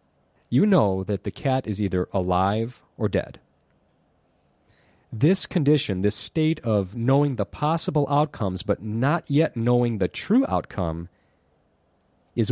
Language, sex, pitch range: Japanese, male, 95-130 Hz